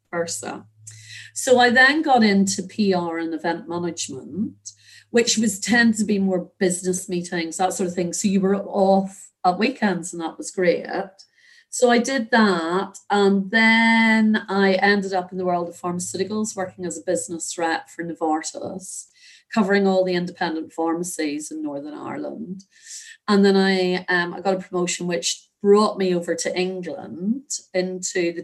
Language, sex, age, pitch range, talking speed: English, female, 30-49, 170-225 Hz, 160 wpm